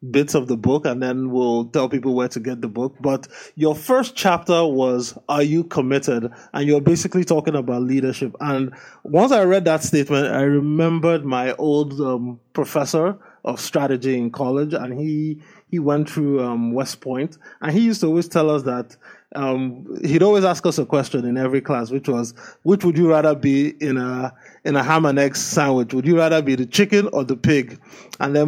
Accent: Nigerian